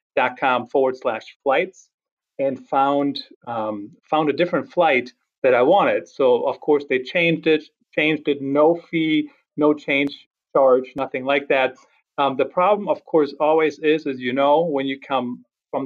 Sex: male